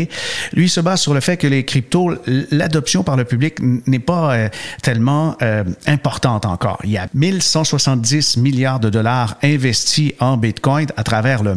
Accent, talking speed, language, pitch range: Canadian, 170 wpm, French, 115-145 Hz